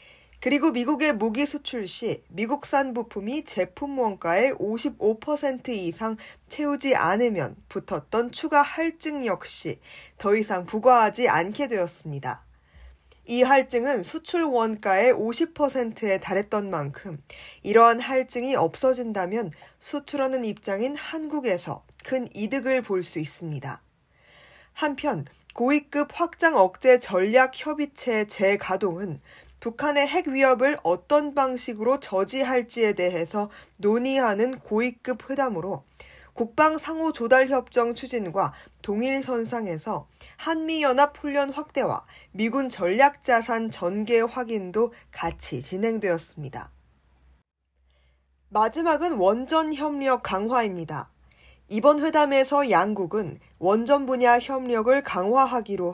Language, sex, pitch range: Korean, female, 190-275 Hz